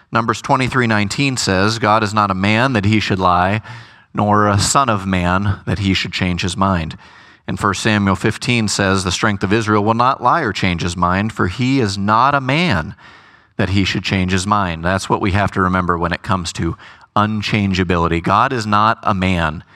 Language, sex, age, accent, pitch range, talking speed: English, male, 30-49, American, 95-115 Hz, 210 wpm